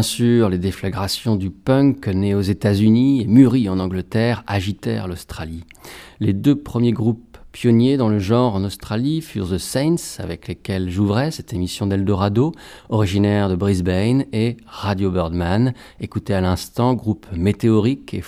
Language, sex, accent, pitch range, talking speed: English, male, French, 95-120 Hz, 150 wpm